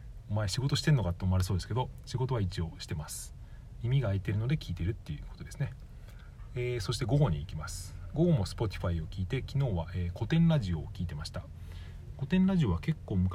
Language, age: Japanese, 40-59